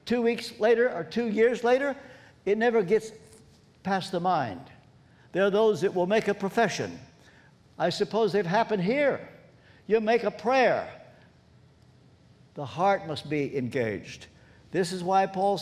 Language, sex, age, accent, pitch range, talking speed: English, male, 60-79, American, 175-230 Hz, 150 wpm